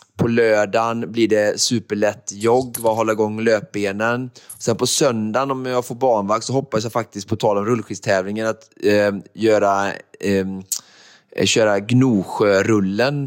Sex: male